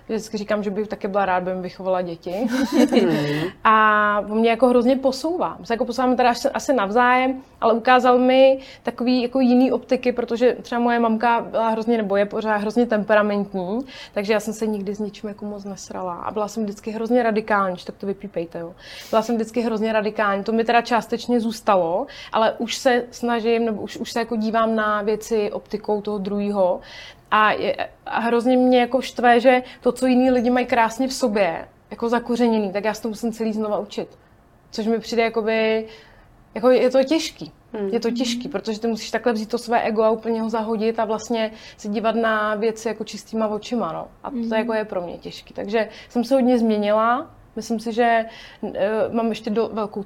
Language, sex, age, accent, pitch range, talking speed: Czech, female, 20-39, native, 210-240 Hz, 200 wpm